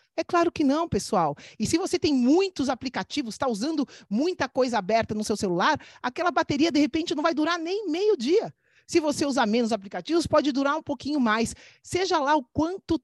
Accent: Brazilian